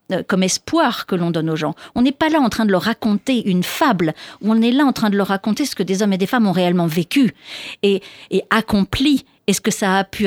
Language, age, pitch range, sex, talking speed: French, 50-69, 175-220 Hz, female, 265 wpm